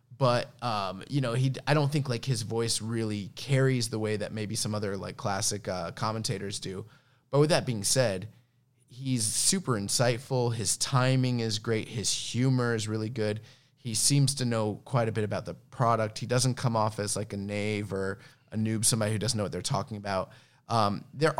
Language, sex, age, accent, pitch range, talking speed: English, male, 20-39, American, 105-130 Hz, 200 wpm